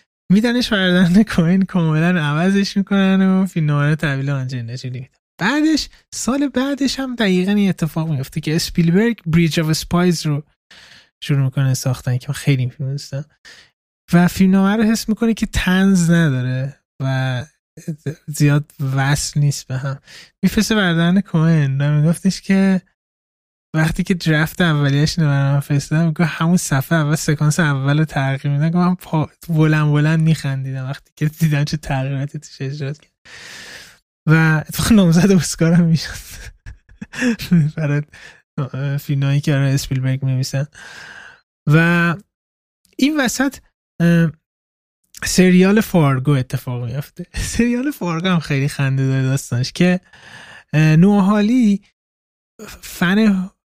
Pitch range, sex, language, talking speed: 140-185 Hz, male, Persian, 125 wpm